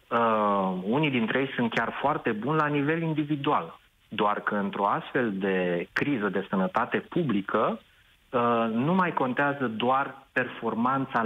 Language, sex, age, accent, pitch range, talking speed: Romanian, male, 30-49, native, 110-150 Hz, 130 wpm